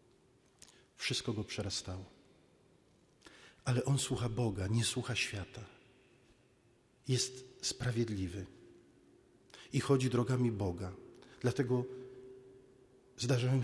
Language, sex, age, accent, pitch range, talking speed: Polish, male, 50-69, native, 105-130 Hz, 80 wpm